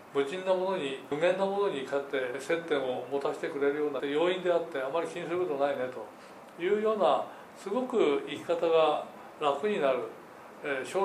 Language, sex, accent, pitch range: Japanese, male, native, 140-205 Hz